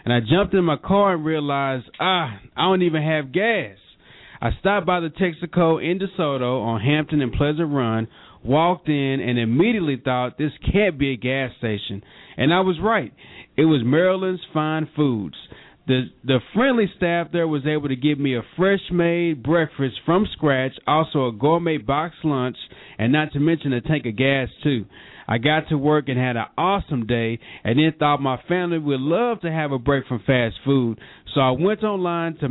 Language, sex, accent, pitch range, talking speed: English, male, American, 130-170 Hz, 190 wpm